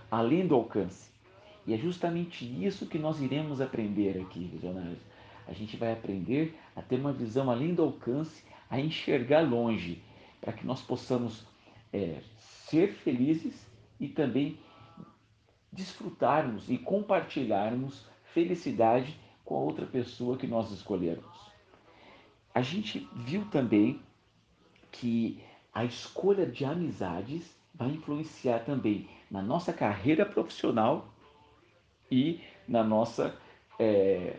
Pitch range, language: 105-145 Hz, Portuguese